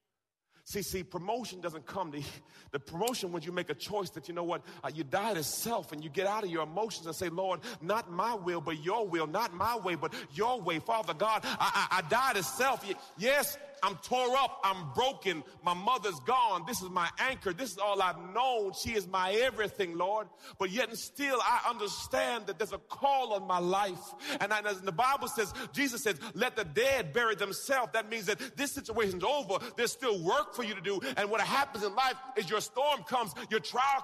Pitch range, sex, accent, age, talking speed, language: 195-270 Hz, male, American, 40-59, 220 wpm, English